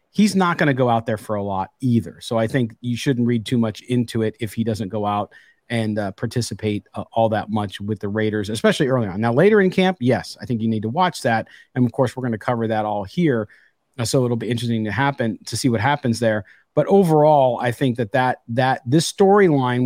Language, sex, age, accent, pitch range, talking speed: English, male, 40-59, American, 120-160 Hz, 250 wpm